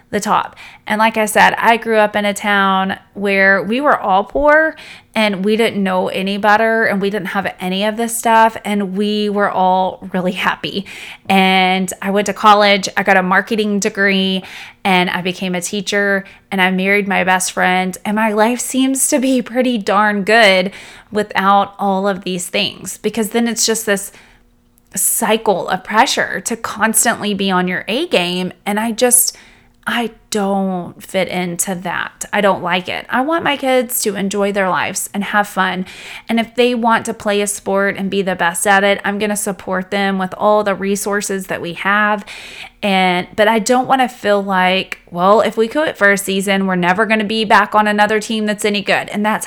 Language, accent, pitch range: English, American, 190-215 Hz